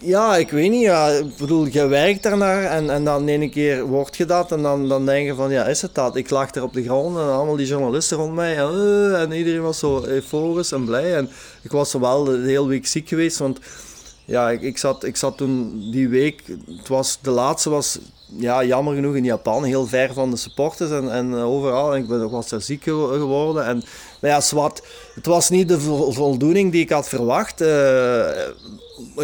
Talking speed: 225 wpm